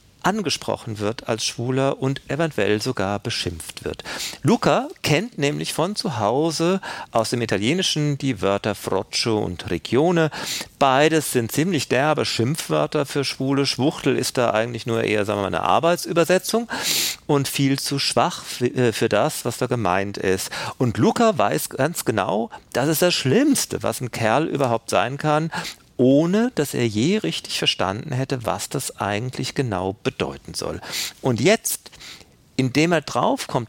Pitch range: 110-150 Hz